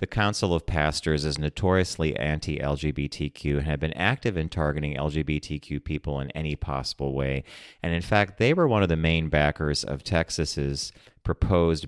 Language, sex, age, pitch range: English, male, 30-49, 75-85 Hz